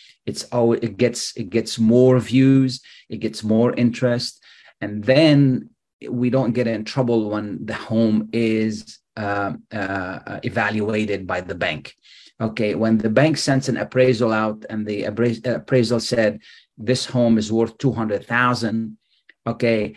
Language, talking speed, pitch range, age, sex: Arabic, 140 wpm, 110-125 Hz, 30-49, male